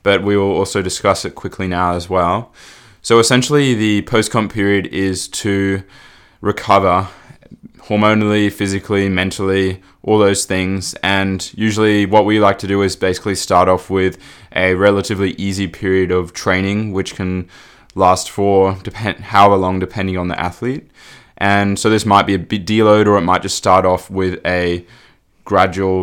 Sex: male